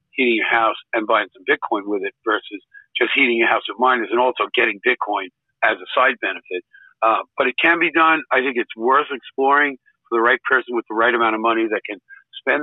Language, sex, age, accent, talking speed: English, male, 50-69, American, 230 wpm